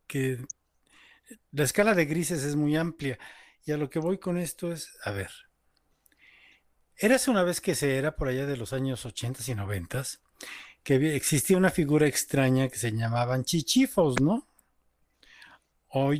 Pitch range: 120-155 Hz